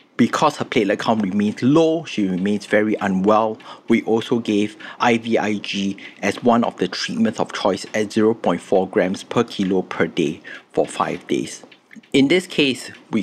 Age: 50-69